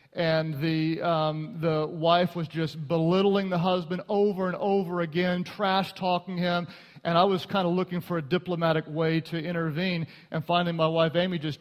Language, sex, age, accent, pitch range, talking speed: English, male, 40-59, American, 175-250 Hz, 180 wpm